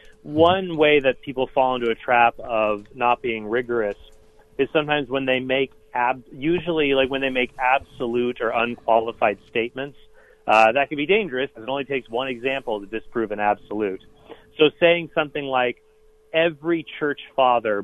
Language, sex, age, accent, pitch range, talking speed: English, male, 30-49, American, 115-155 Hz, 165 wpm